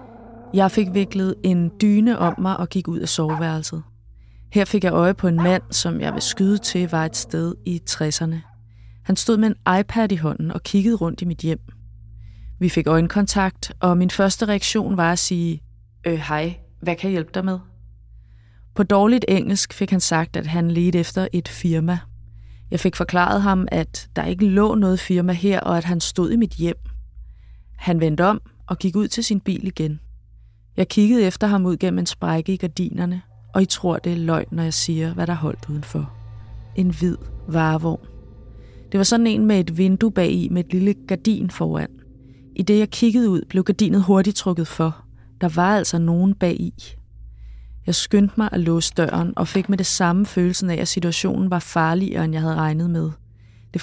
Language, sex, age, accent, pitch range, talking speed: Danish, female, 20-39, native, 155-195 Hz, 200 wpm